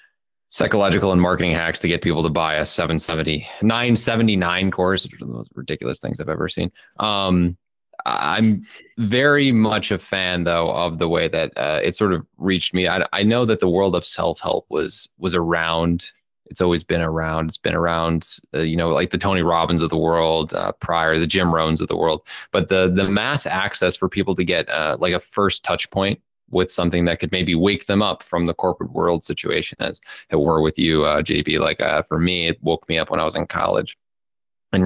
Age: 20-39